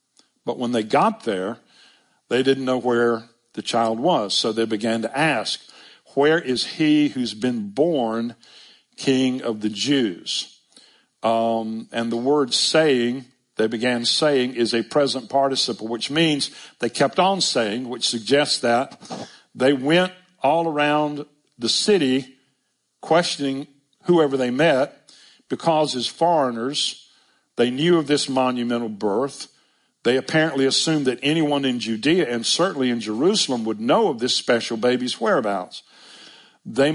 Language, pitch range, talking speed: English, 120-150 Hz, 140 wpm